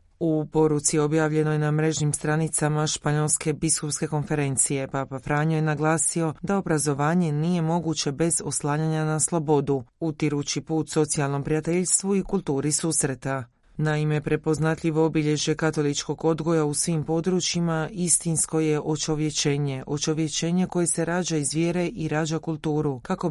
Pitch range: 145-165 Hz